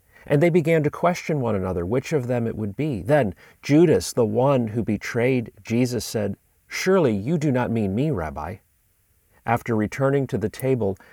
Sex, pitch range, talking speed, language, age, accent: male, 95-135 Hz, 180 wpm, English, 40-59, American